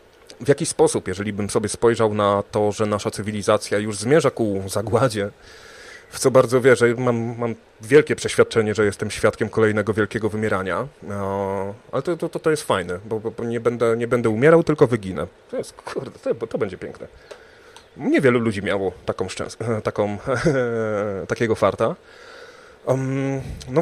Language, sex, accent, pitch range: Polish, male, native, 105-135 Hz